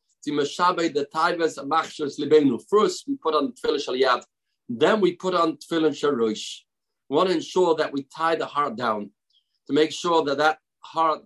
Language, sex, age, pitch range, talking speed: English, male, 40-59, 145-200 Hz, 135 wpm